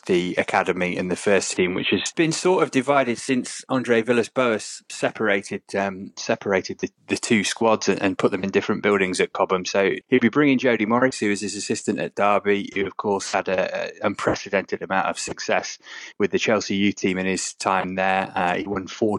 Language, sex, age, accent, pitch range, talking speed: English, male, 20-39, British, 95-115 Hz, 205 wpm